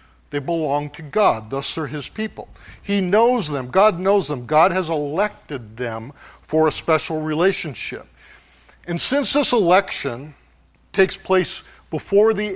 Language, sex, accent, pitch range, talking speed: English, male, American, 145-195 Hz, 145 wpm